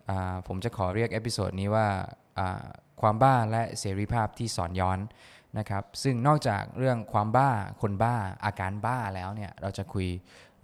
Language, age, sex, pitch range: Thai, 20-39, male, 95-115 Hz